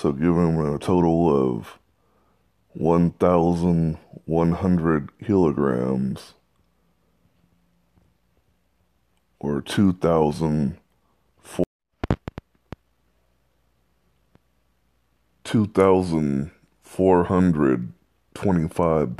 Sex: male